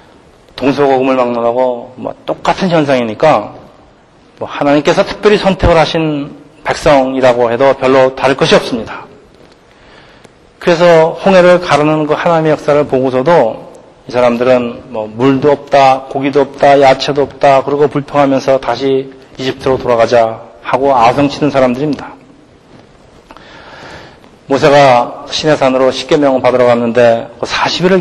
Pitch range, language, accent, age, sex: 120-145 Hz, Korean, native, 40-59, male